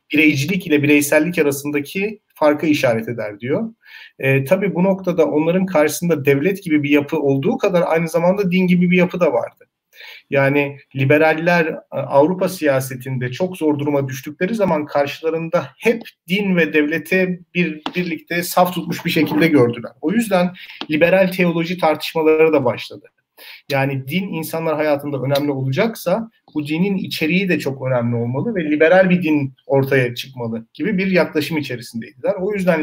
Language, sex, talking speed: Turkish, male, 145 wpm